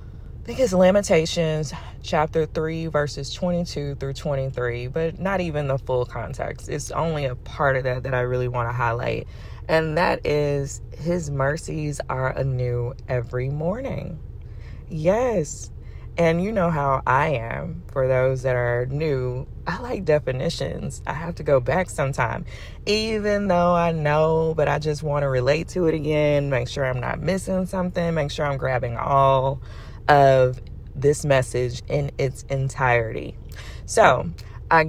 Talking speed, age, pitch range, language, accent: 155 wpm, 20-39, 130-170 Hz, English, American